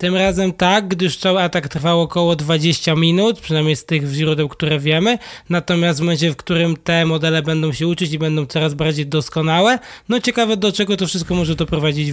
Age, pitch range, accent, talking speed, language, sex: 20-39, 150-180 Hz, native, 195 wpm, Polish, male